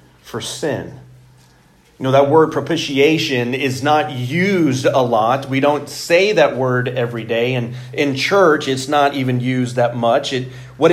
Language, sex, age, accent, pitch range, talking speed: English, male, 40-59, American, 120-150 Hz, 165 wpm